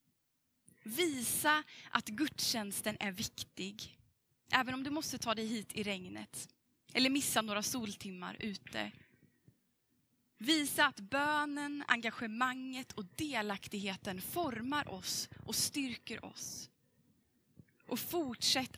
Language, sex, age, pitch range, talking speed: Swedish, female, 20-39, 200-270 Hz, 100 wpm